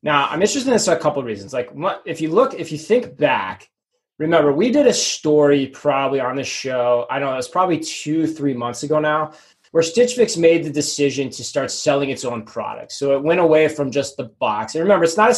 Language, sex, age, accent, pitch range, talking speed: English, male, 20-39, American, 125-165 Hz, 245 wpm